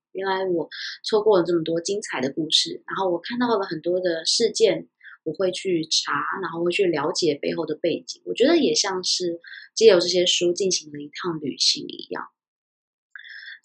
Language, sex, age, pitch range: Chinese, female, 20-39, 165-215 Hz